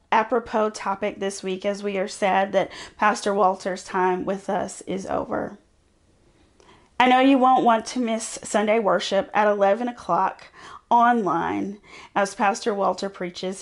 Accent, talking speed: American, 145 wpm